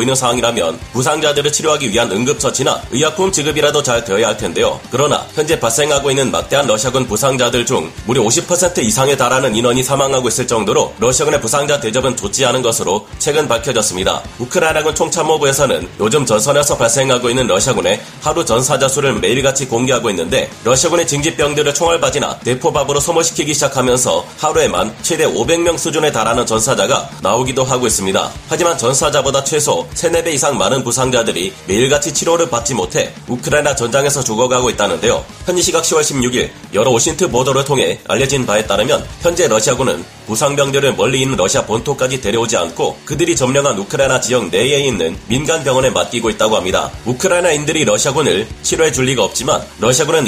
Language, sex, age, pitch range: Korean, male, 30-49, 125-155 Hz